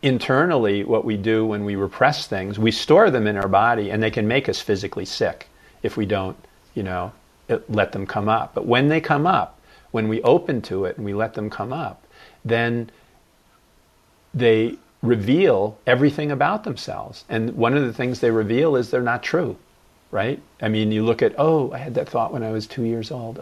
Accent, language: American, English